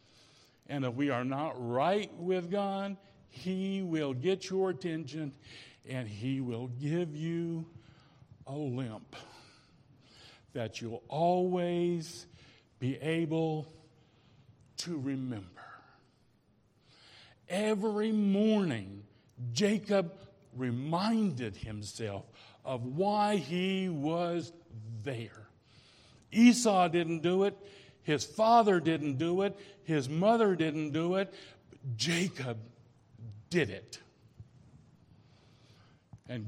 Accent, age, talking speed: American, 60-79, 90 wpm